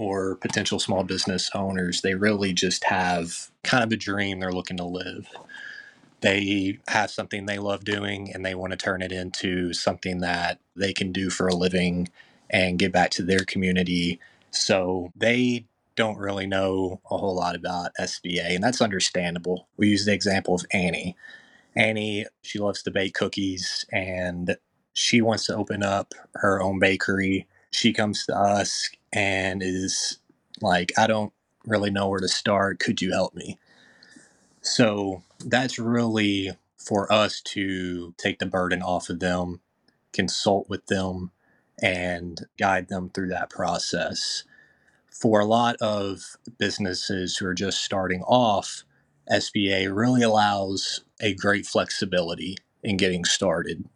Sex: male